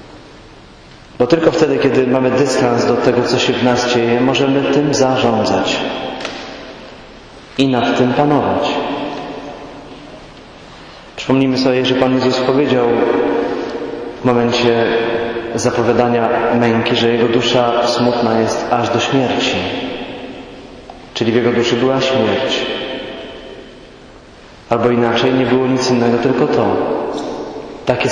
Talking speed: 115 wpm